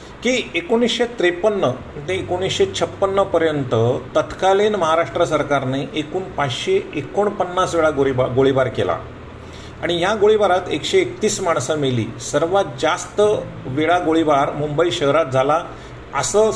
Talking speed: 110 wpm